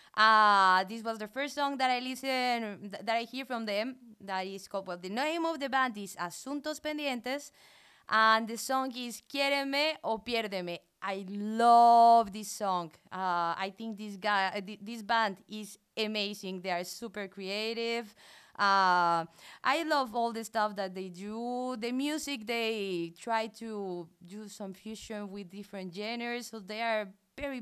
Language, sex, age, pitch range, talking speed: English, female, 20-39, 195-255 Hz, 165 wpm